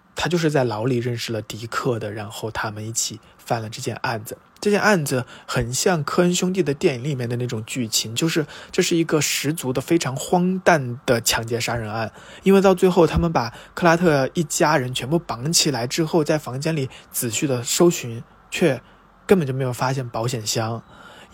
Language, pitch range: Chinese, 115-145 Hz